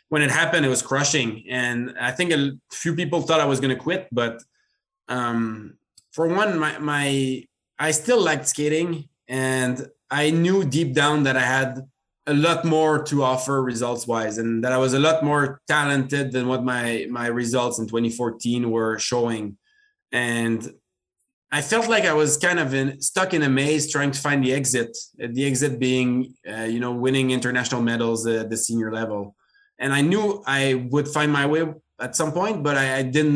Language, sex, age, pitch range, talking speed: English, male, 20-39, 120-150 Hz, 185 wpm